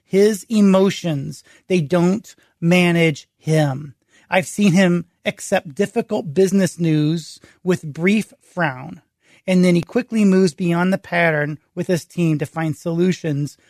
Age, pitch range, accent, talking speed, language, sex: 30-49, 165-200 Hz, American, 130 wpm, English, male